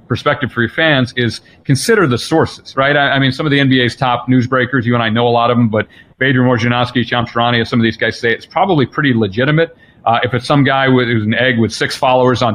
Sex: male